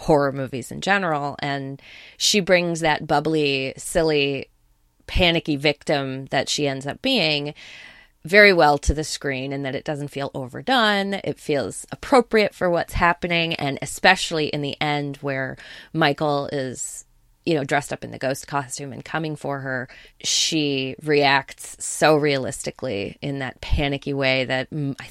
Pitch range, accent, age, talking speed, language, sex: 140-165 Hz, American, 20-39, 155 wpm, English, female